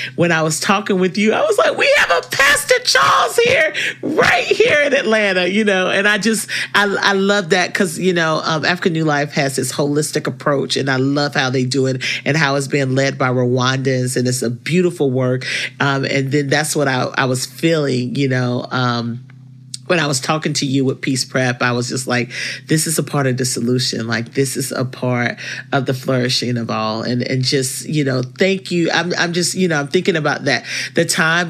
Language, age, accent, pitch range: English, 40-59, American, 130-165 Hz